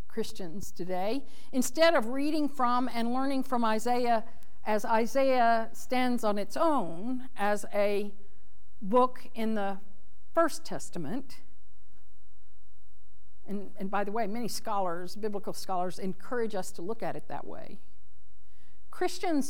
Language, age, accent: English, 50-69, American